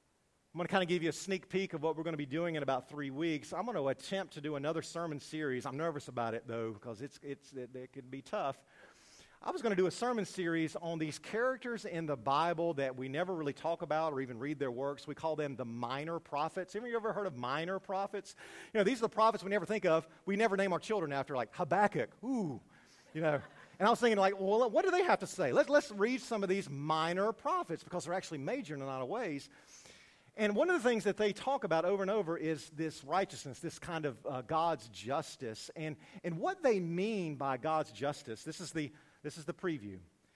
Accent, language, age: American, English, 40-59